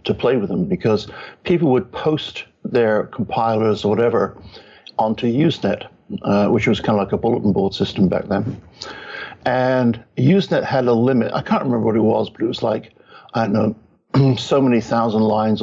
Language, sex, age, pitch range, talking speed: English, male, 60-79, 110-130 Hz, 185 wpm